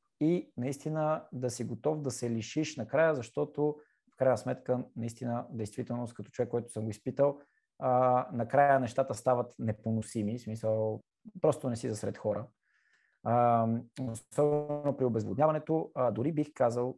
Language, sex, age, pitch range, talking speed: Bulgarian, male, 20-39, 115-150 Hz, 135 wpm